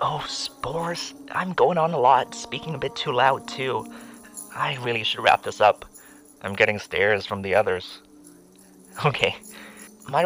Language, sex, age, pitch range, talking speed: English, male, 30-49, 100-150 Hz, 160 wpm